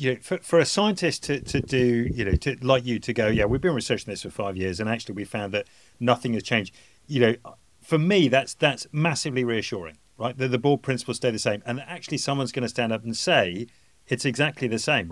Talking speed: 245 wpm